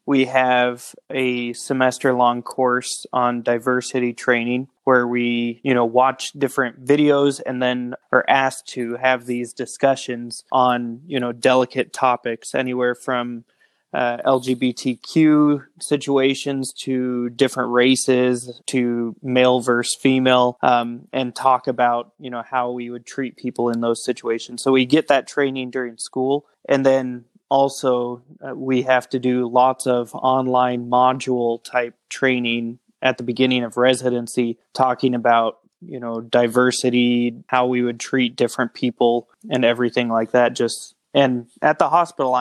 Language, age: English, 20-39